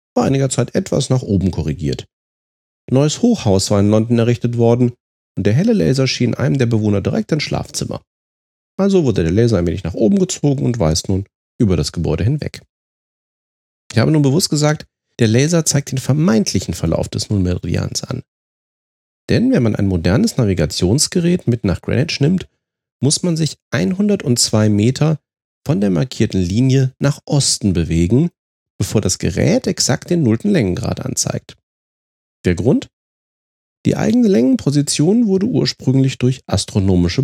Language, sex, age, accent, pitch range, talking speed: German, male, 40-59, German, 95-145 Hz, 155 wpm